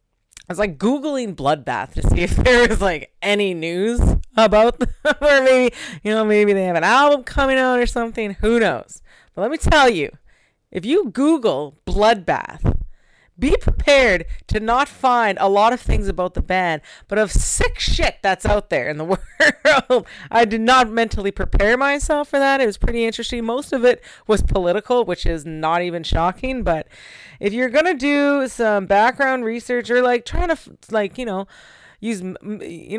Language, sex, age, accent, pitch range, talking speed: English, female, 30-49, American, 185-270 Hz, 180 wpm